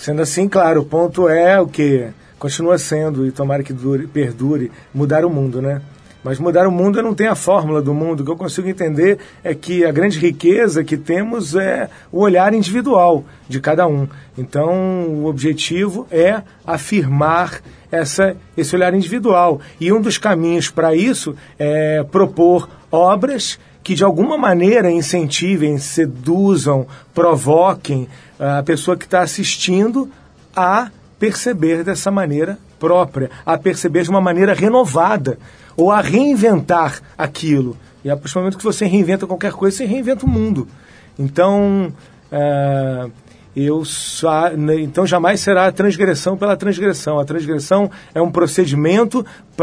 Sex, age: male, 40-59